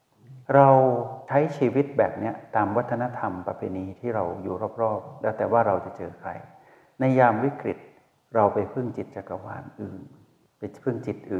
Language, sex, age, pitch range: Thai, male, 60-79, 100-130 Hz